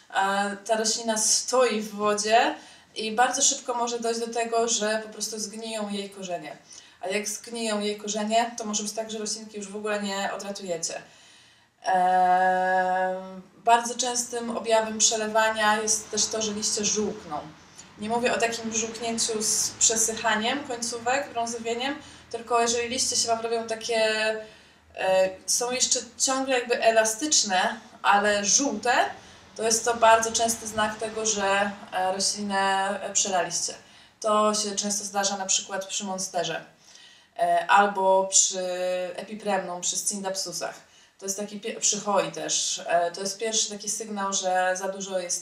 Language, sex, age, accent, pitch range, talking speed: Polish, female, 20-39, native, 195-235 Hz, 140 wpm